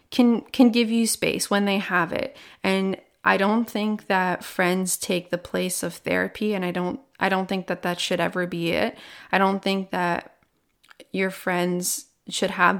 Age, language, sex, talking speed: 20-39, English, female, 190 wpm